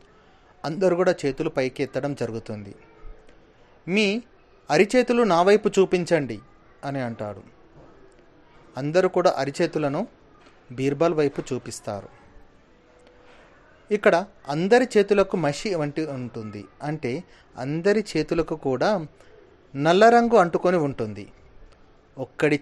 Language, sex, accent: Telugu, male, native